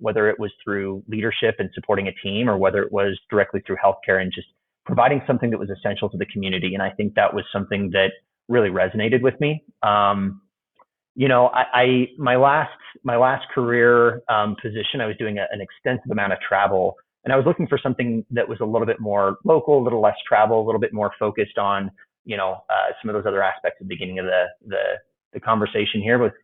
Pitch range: 100-125 Hz